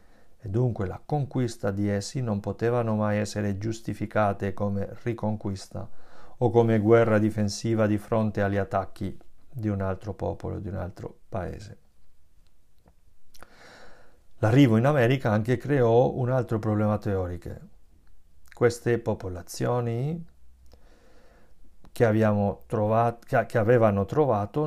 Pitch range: 95-115 Hz